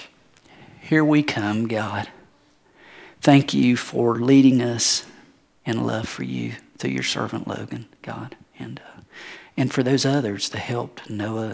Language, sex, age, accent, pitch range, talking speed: English, male, 40-59, American, 115-145 Hz, 140 wpm